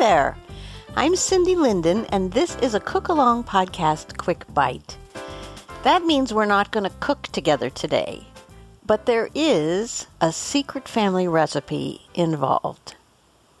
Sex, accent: female, American